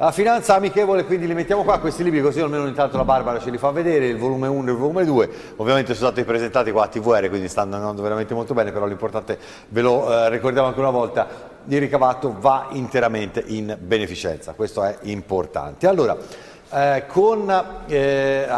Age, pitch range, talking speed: 50-69, 120-155 Hz, 195 wpm